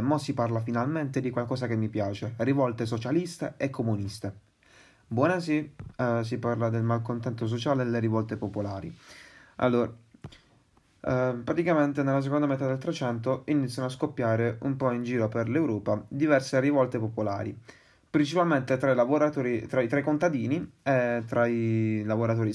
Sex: male